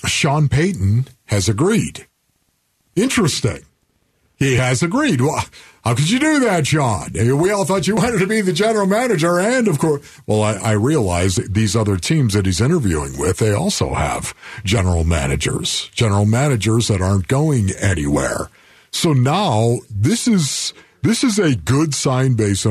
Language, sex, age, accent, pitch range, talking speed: English, male, 50-69, American, 105-150 Hz, 160 wpm